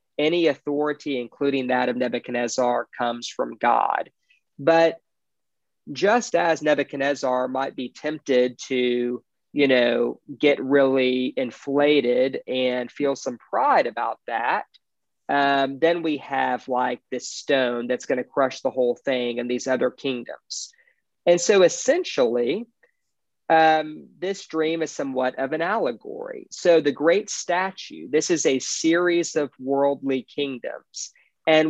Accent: American